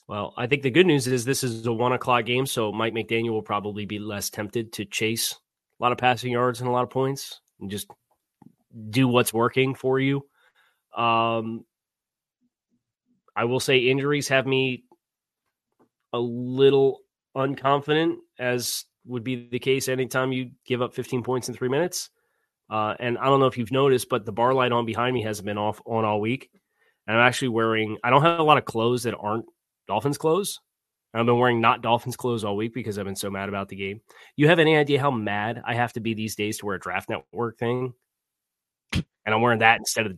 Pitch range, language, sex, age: 115-135 Hz, English, male, 30-49